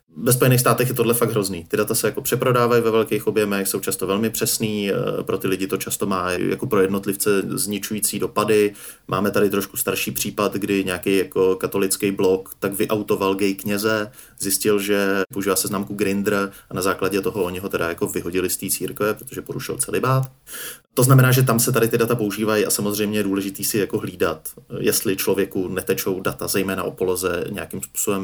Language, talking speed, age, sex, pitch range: Czech, 190 wpm, 30-49, male, 100-120 Hz